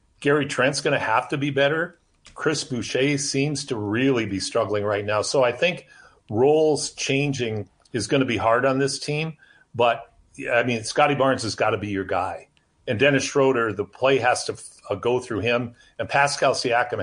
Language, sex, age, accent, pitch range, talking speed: English, male, 50-69, American, 110-140 Hz, 195 wpm